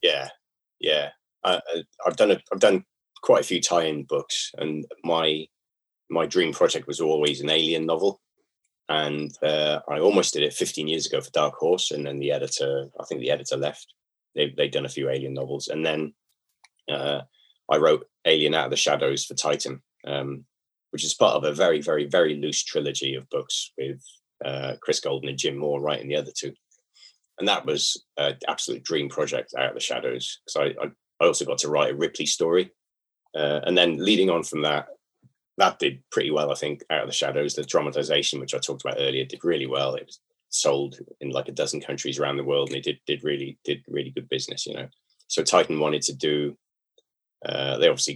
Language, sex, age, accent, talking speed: English, male, 30-49, British, 205 wpm